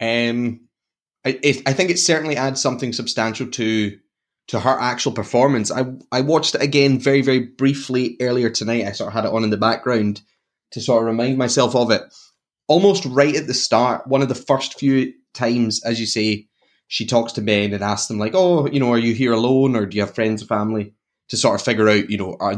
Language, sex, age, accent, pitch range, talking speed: English, male, 10-29, British, 105-130 Hz, 225 wpm